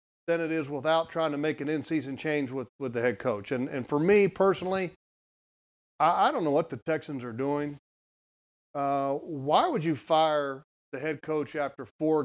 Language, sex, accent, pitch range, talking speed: English, male, American, 135-165 Hz, 190 wpm